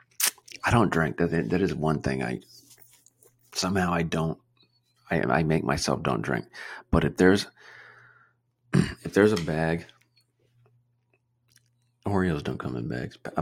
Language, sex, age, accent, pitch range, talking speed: English, male, 30-49, American, 80-120 Hz, 125 wpm